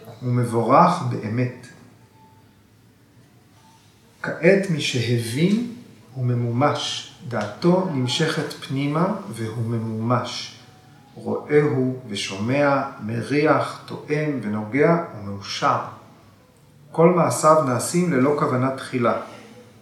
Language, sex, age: Hebrew, male, 40-59